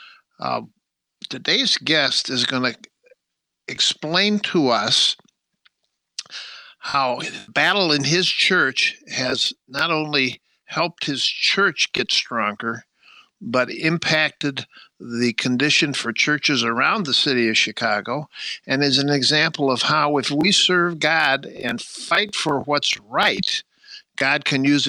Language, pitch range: English, 130-180 Hz